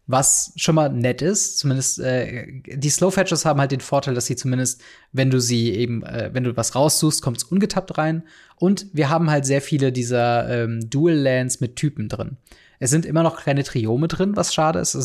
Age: 20-39